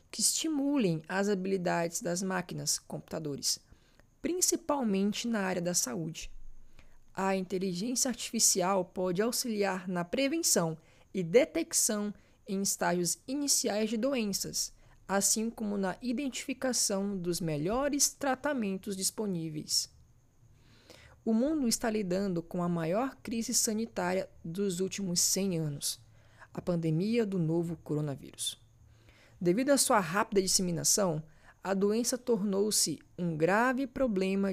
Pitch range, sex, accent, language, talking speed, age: 170-230 Hz, female, Brazilian, Portuguese, 110 wpm, 20-39